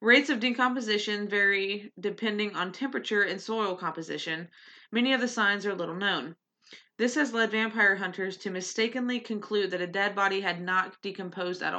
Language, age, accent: English, 20-39, American